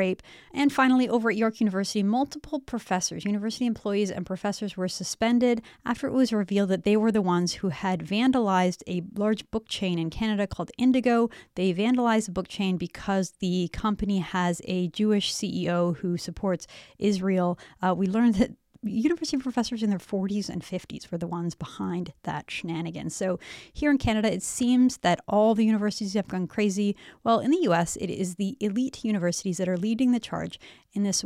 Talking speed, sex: 180 wpm, female